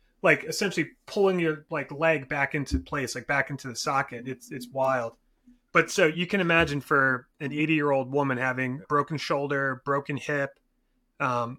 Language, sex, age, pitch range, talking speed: English, male, 30-49, 130-160 Hz, 175 wpm